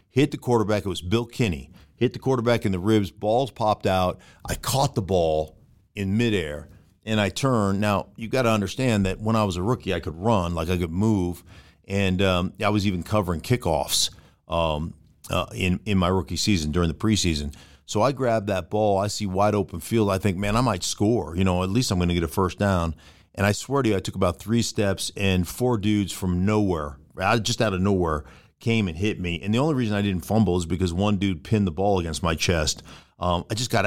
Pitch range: 90-105 Hz